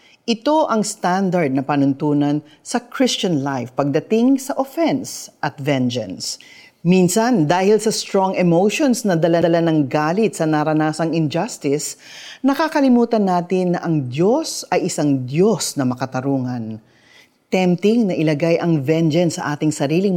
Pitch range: 145-210 Hz